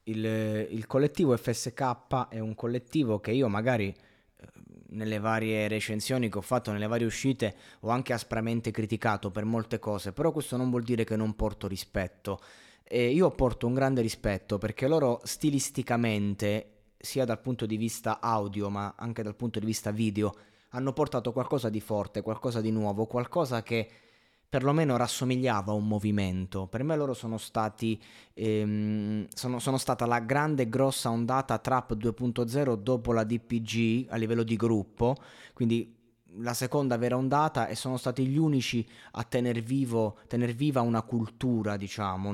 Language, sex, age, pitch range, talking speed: Italian, male, 20-39, 110-130 Hz, 160 wpm